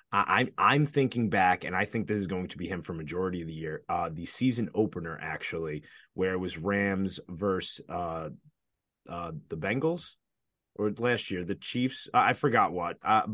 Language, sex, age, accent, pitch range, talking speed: English, male, 30-49, American, 95-120 Hz, 195 wpm